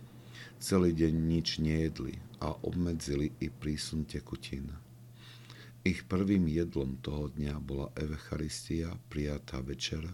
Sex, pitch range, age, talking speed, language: male, 75-105 Hz, 50-69, 105 wpm, Slovak